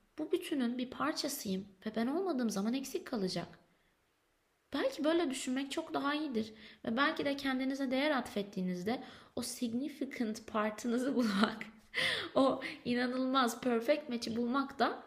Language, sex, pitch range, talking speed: Turkish, female, 205-260 Hz, 125 wpm